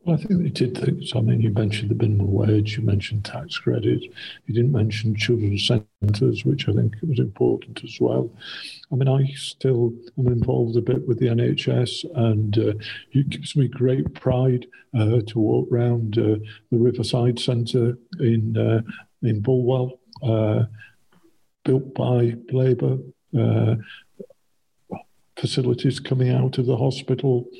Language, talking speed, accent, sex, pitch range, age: English, 155 wpm, British, male, 115-135 Hz, 50-69